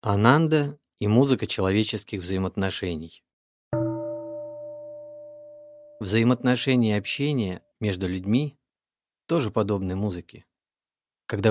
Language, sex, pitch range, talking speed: Russian, male, 95-120 Hz, 70 wpm